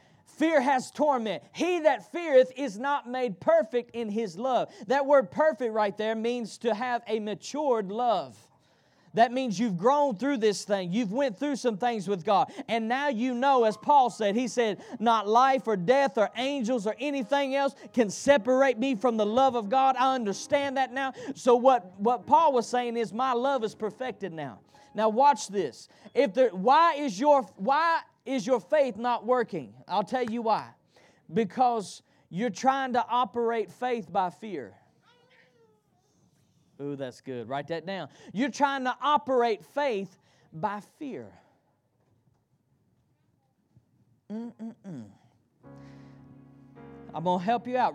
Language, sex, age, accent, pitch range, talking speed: English, male, 30-49, American, 210-270 Hz, 160 wpm